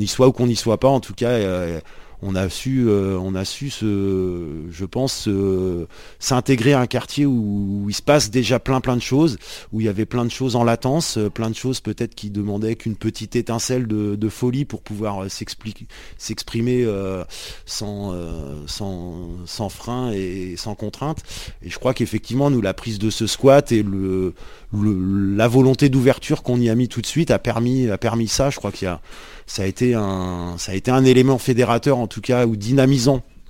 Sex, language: male, French